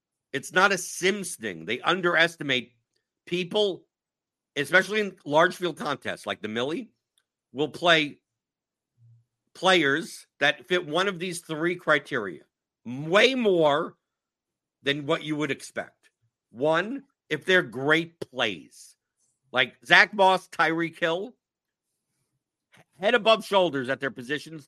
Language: English